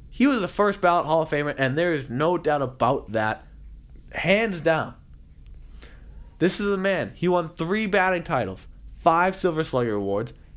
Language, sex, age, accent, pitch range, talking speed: English, male, 20-39, American, 115-175 Hz, 170 wpm